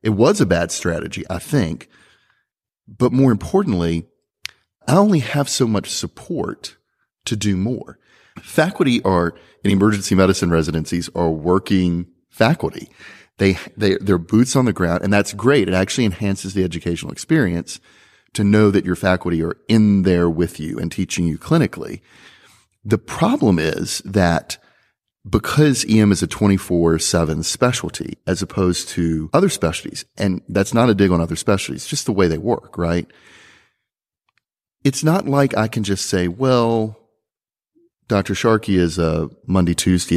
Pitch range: 85-115 Hz